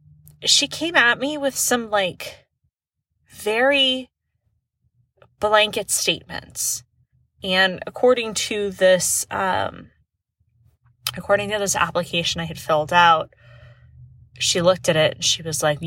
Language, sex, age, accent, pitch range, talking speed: English, female, 20-39, American, 125-205 Hz, 115 wpm